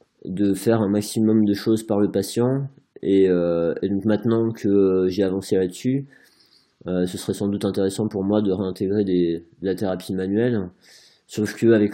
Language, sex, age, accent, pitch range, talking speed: French, male, 20-39, French, 95-110 Hz, 180 wpm